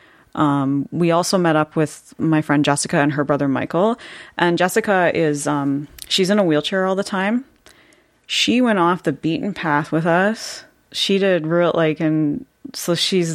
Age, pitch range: 30-49, 145-170 Hz